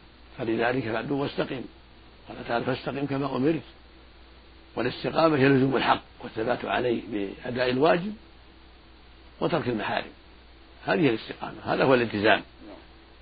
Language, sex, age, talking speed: Arabic, male, 60-79, 105 wpm